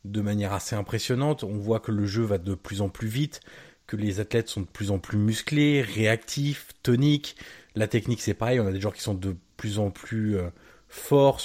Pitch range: 105-130 Hz